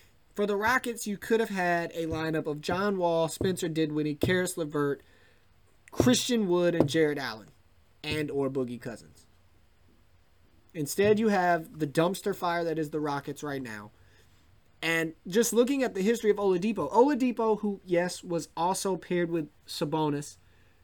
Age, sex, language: 30-49, male, English